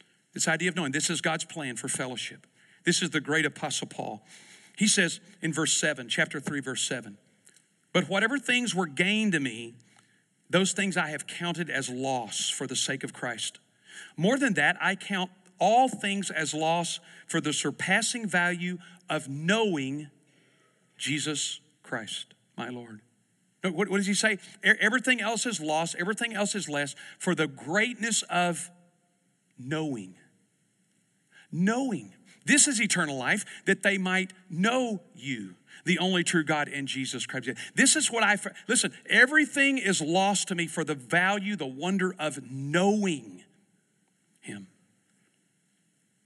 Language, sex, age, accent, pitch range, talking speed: English, male, 50-69, American, 140-195 Hz, 150 wpm